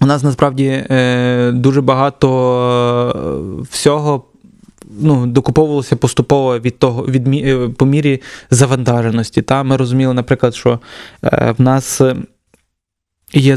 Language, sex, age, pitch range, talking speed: Ukrainian, male, 20-39, 120-135 Hz, 105 wpm